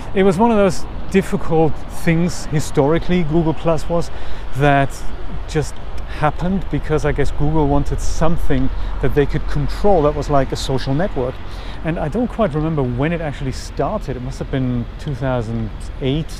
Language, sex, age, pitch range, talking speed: English, male, 40-59, 125-160 Hz, 160 wpm